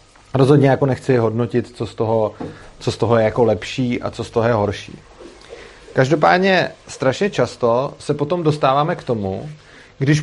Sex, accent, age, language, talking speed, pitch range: male, native, 30-49, Czech, 165 wpm, 120-150 Hz